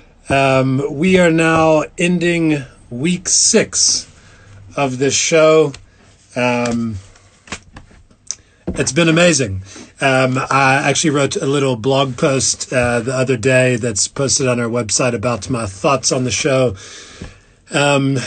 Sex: male